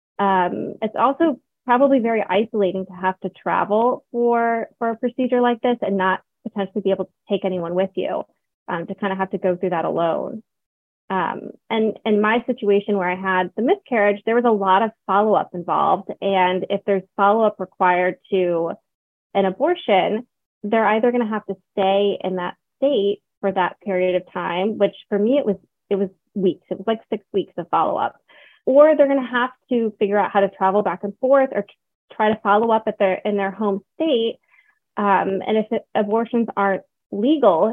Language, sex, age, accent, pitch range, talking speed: English, female, 20-39, American, 190-235 Hz, 190 wpm